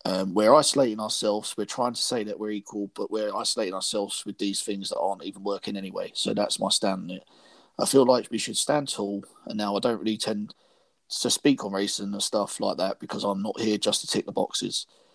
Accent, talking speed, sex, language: British, 230 wpm, male, English